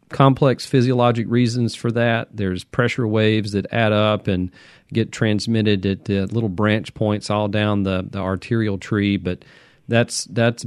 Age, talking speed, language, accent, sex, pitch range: 40-59, 155 wpm, English, American, male, 100-135 Hz